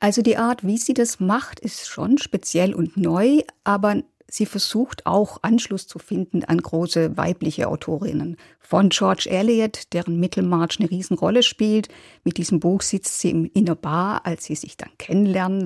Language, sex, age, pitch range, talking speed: German, female, 50-69, 175-220 Hz, 165 wpm